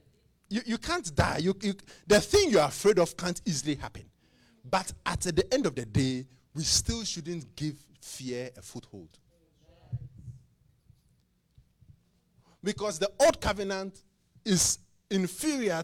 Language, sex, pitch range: English, male, 120-185 Hz